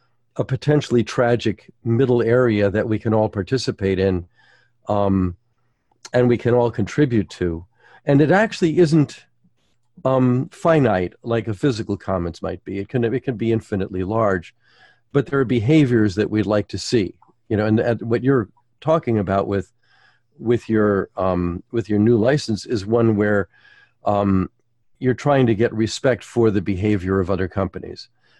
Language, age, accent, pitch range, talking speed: English, 50-69, American, 100-125 Hz, 165 wpm